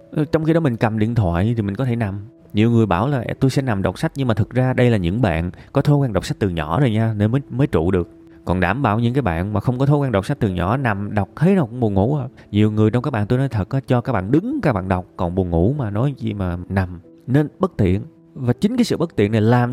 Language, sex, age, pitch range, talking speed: Vietnamese, male, 20-39, 95-150 Hz, 305 wpm